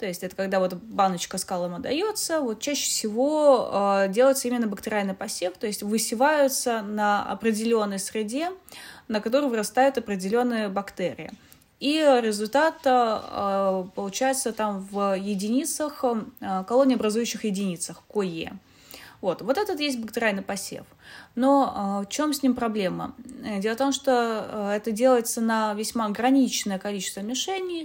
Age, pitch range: 20-39, 195-260 Hz